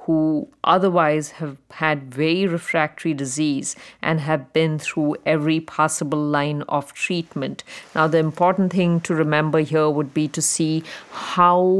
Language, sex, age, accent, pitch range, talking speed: English, female, 50-69, Indian, 145-160 Hz, 140 wpm